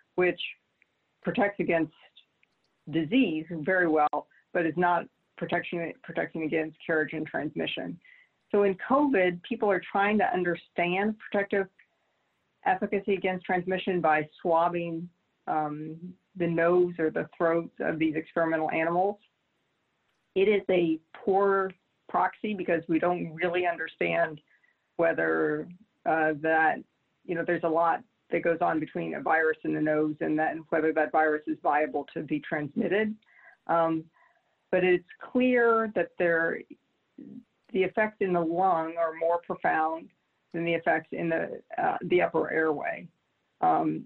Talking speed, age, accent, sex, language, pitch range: 135 wpm, 50-69, American, female, English, 160-190 Hz